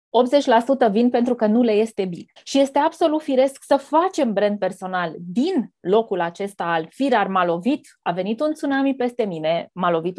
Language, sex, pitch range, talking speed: Romanian, female, 185-260 Hz, 185 wpm